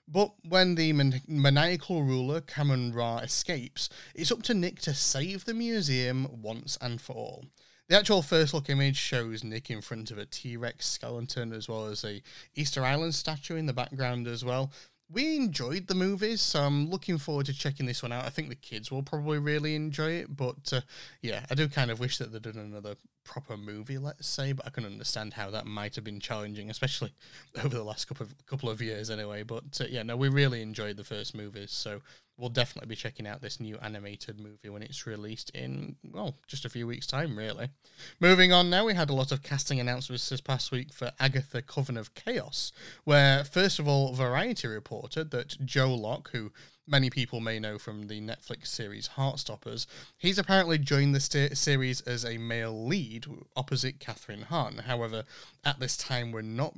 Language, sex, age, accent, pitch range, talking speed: English, male, 30-49, British, 115-145 Hz, 200 wpm